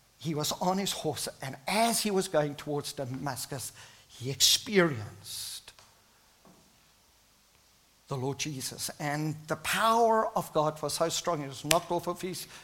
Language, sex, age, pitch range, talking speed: English, male, 50-69, 140-200 Hz, 145 wpm